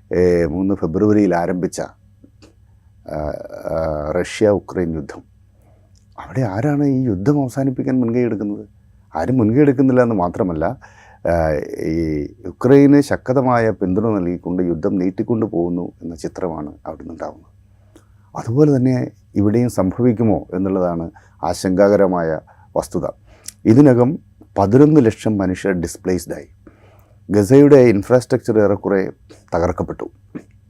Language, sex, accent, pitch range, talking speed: Malayalam, male, native, 95-115 Hz, 90 wpm